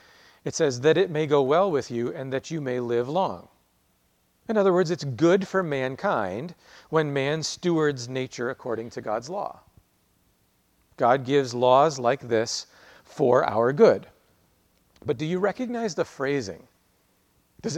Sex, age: male, 40-59